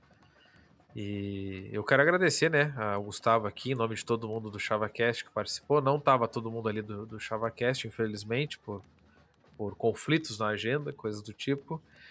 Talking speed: 170 wpm